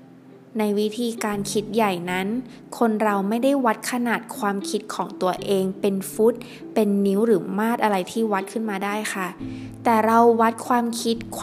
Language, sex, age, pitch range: Thai, female, 20-39, 195-230 Hz